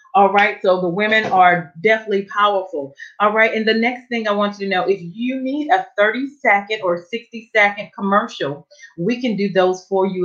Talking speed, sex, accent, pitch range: 205 wpm, female, American, 180-220 Hz